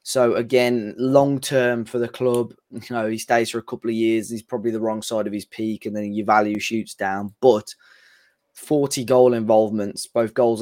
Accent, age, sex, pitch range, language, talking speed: British, 10-29, male, 110-125 Hz, English, 205 wpm